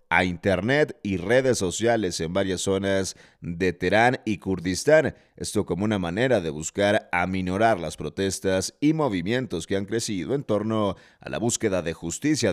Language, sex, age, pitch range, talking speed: Spanish, male, 40-59, 90-110 Hz, 160 wpm